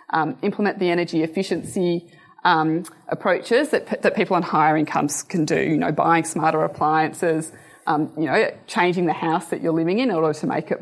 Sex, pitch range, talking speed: female, 155-195 Hz, 200 wpm